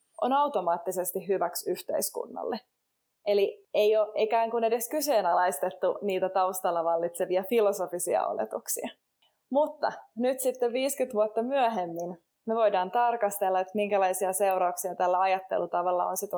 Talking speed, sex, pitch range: 115 wpm, female, 185-225 Hz